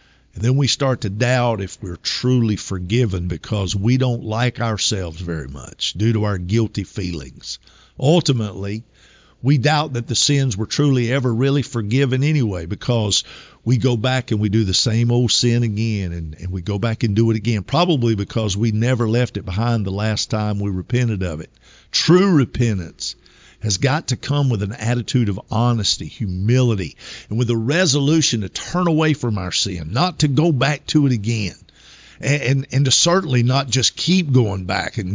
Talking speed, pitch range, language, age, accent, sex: 185 wpm, 100-135 Hz, English, 50-69, American, male